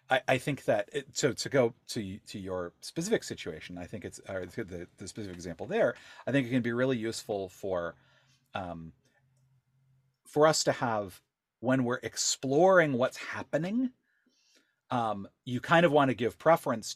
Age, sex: 40-59, male